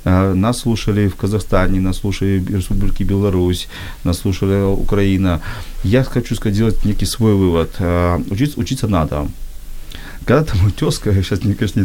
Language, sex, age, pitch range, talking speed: Ukrainian, male, 40-59, 90-115 Hz, 145 wpm